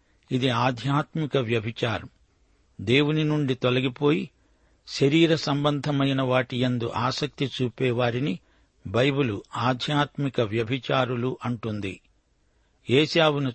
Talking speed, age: 60 wpm, 60-79